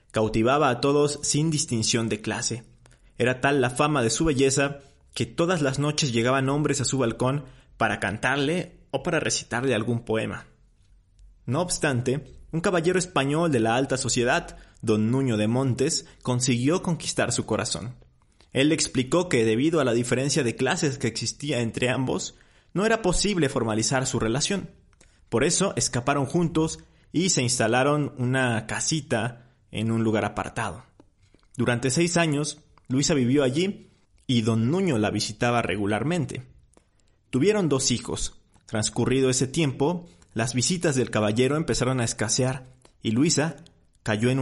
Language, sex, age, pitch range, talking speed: Spanish, male, 30-49, 115-150 Hz, 145 wpm